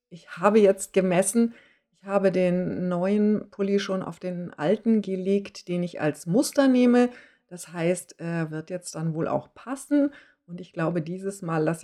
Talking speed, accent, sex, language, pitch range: 170 wpm, German, female, English, 165-225 Hz